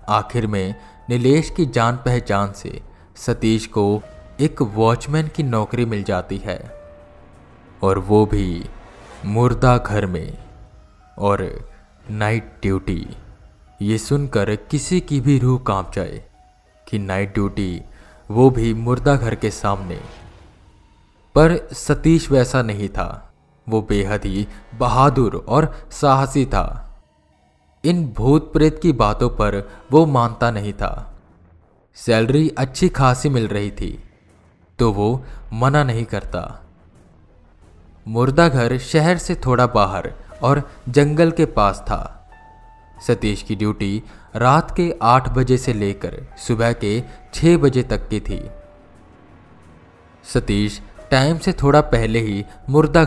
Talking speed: 125 wpm